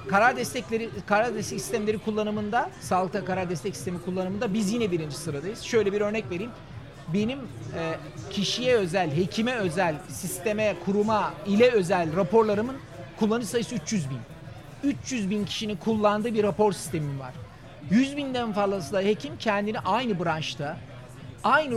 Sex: male